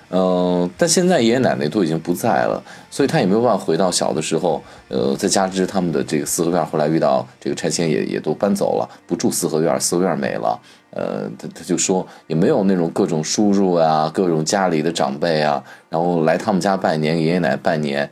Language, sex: Chinese, male